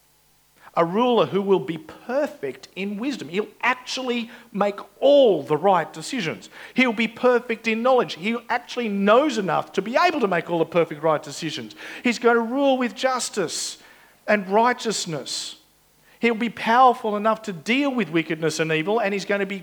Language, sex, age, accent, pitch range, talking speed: English, male, 50-69, Australian, 165-235 Hz, 175 wpm